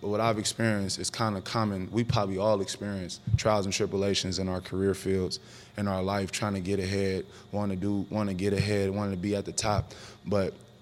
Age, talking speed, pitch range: 20-39, 220 wpm, 100-115 Hz